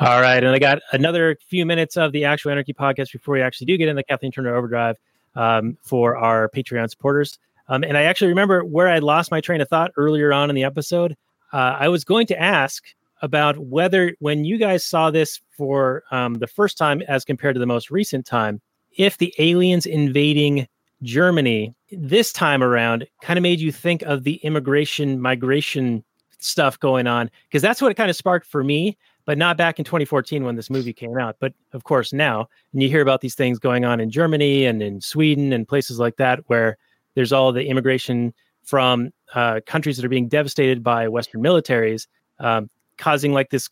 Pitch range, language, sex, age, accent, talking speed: 125-155 Hz, English, male, 30-49, American, 205 wpm